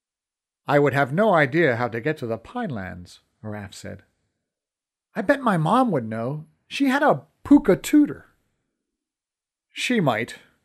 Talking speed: 145 wpm